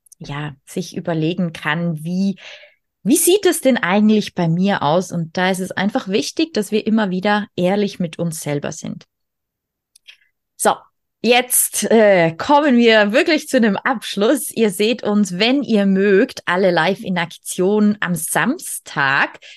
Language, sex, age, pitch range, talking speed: German, female, 20-39, 175-225 Hz, 150 wpm